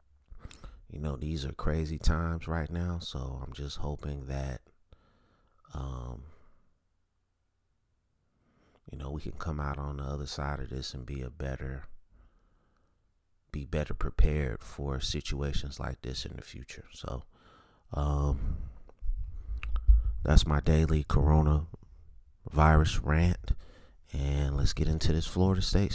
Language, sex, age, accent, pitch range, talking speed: English, male, 30-49, American, 70-85 Hz, 125 wpm